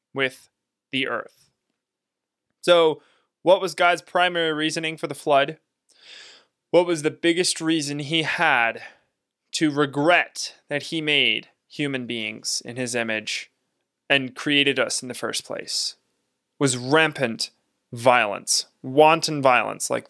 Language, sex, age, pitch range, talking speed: English, male, 20-39, 135-165 Hz, 125 wpm